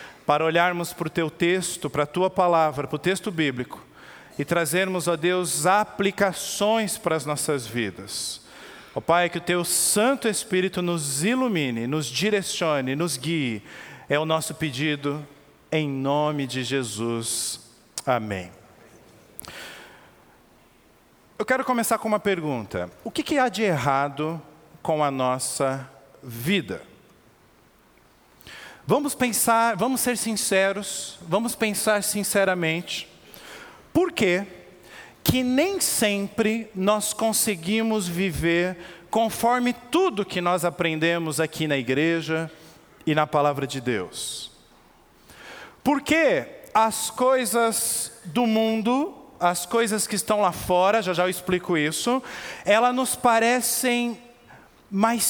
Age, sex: 40-59, male